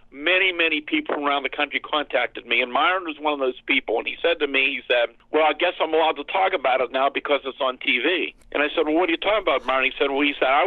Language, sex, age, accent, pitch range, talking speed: English, male, 50-69, American, 140-195 Hz, 290 wpm